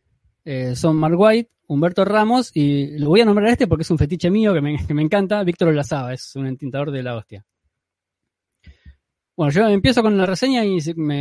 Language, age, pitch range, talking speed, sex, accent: Spanish, 20-39, 125-185 Hz, 205 wpm, male, Argentinian